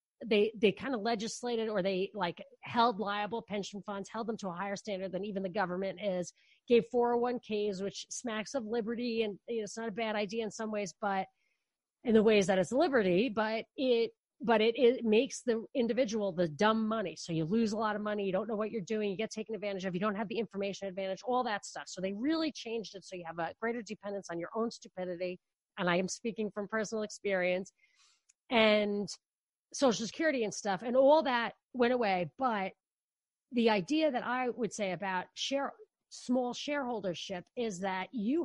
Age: 30-49